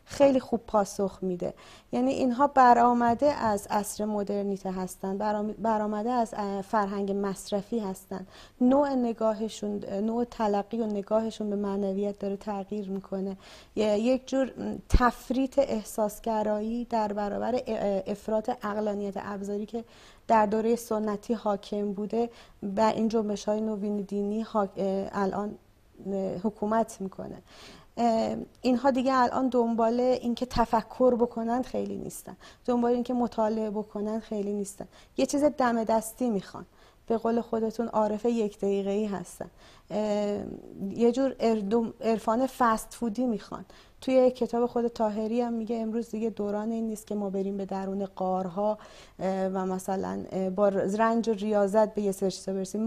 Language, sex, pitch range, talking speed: Persian, female, 205-240 Hz, 130 wpm